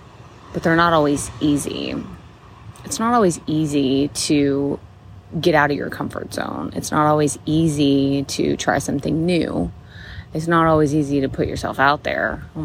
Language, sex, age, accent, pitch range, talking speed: English, female, 20-39, American, 130-155 Hz, 160 wpm